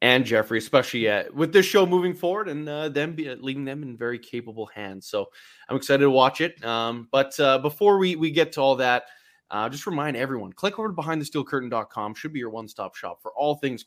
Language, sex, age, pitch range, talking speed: English, male, 20-39, 125-180 Hz, 225 wpm